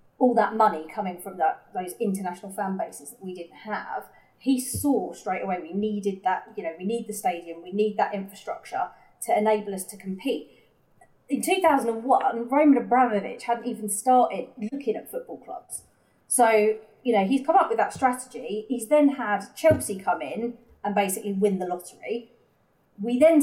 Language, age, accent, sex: English, 30-49, British, female